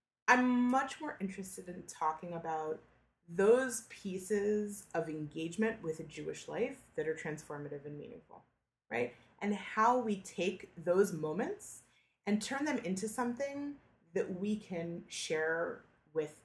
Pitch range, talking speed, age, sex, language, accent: 155-205 Hz, 135 wpm, 20-39, female, English, American